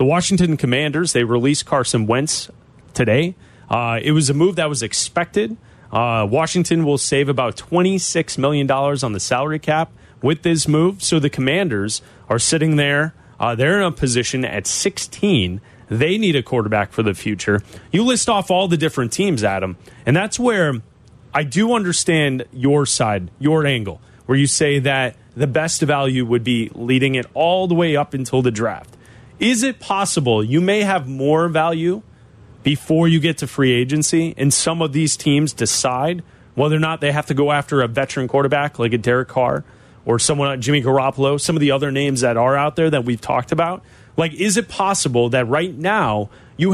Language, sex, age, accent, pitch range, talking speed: English, male, 30-49, American, 125-165 Hz, 190 wpm